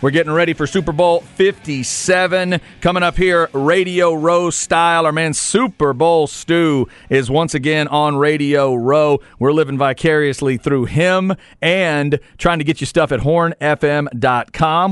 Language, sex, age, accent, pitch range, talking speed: English, male, 40-59, American, 135-175 Hz, 150 wpm